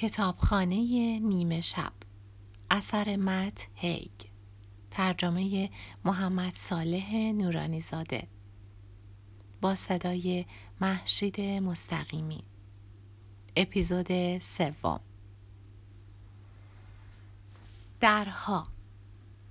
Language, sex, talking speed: Persian, female, 50 wpm